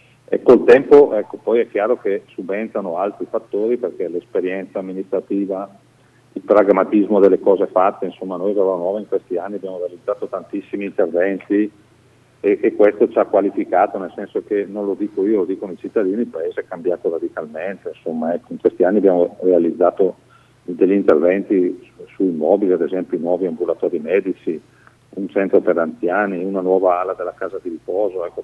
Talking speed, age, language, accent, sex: 175 wpm, 40-59, Italian, native, male